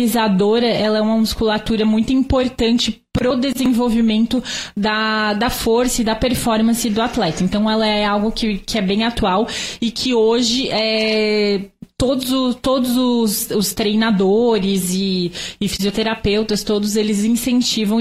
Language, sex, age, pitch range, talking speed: Portuguese, female, 20-39, 205-235 Hz, 135 wpm